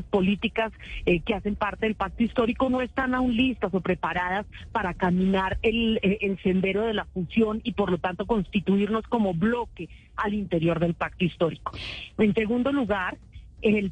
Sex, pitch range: female, 195-235 Hz